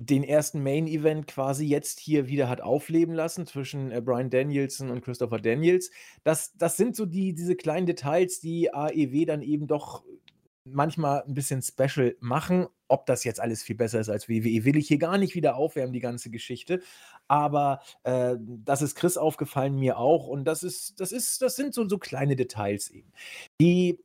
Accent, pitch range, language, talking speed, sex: German, 125-175 Hz, German, 185 wpm, male